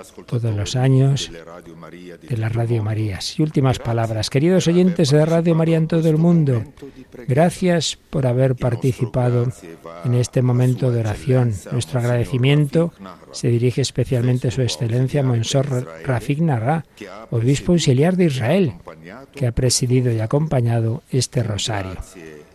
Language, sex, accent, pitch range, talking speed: Spanish, male, Spanish, 110-140 Hz, 135 wpm